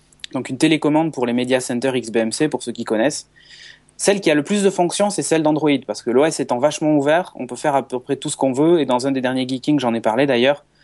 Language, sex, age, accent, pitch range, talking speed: French, male, 20-39, French, 125-160 Hz, 265 wpm